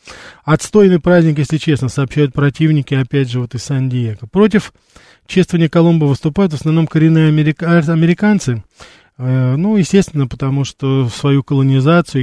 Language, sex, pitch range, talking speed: Russian, male, 135-170 Hz, 130 wpm